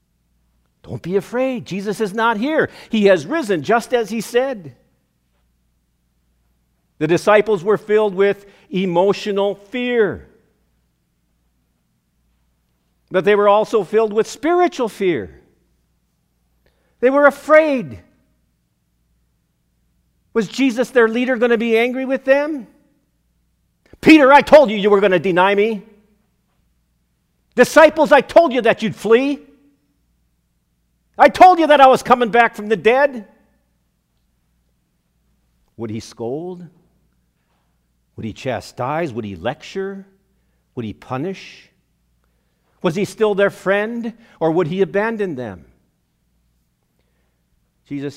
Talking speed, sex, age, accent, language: 115 wpm, male, 50-69, American, English